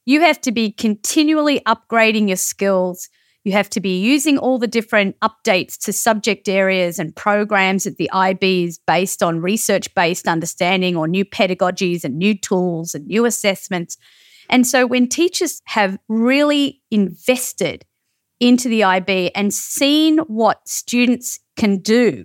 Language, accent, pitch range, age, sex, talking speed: English, Australian, 185-245 Hz, 30-49, female, 145 wpm